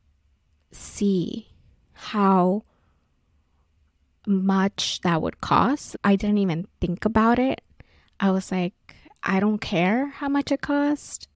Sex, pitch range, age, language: female, 185-225 Hz, 20-39, English